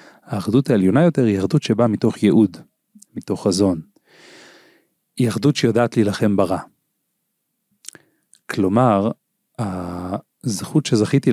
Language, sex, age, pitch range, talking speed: Hebrew, male, 40-59, 95-130 Hz, 95 wpm